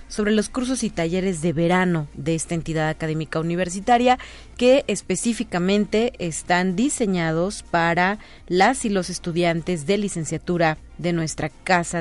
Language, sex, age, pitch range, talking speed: Spanish, female, 30-49, 170-210 Hz, 130 wpm